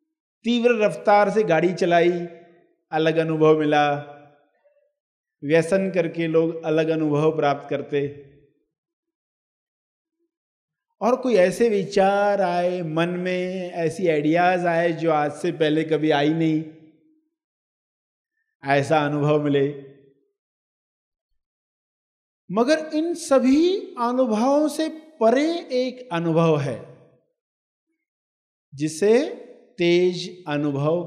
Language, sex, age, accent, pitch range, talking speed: Hindi, male, 50-69, native, 155-245 Hz, 95 wpm